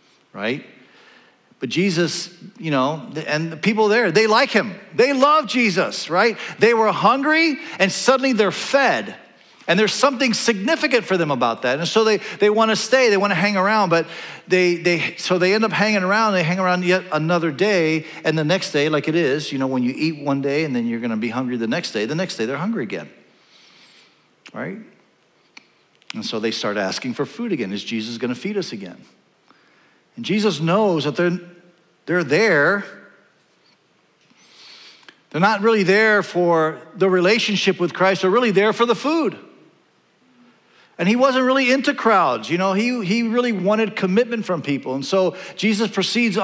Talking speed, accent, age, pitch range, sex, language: 185 wpm, American, 50-69, 165-215 Hz, male, English